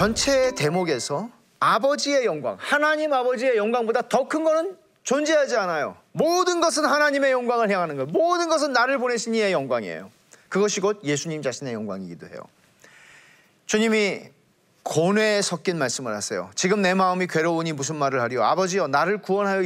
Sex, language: male, Korean